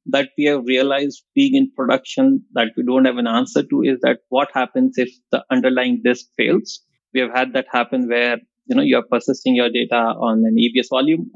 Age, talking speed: 20-39, 210 wpm